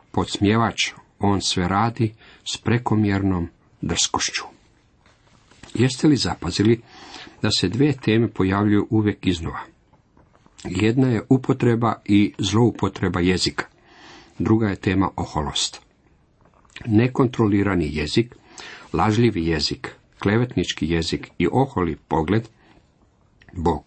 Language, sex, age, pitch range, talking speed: Croatian, male, 50-69, 90-115 Hz, 95 wpm